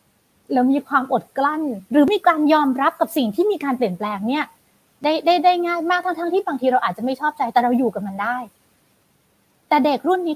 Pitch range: 235-320 Hz